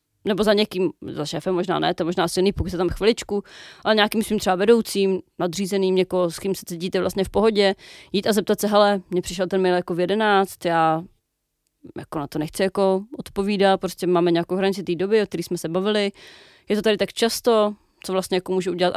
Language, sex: Czech, female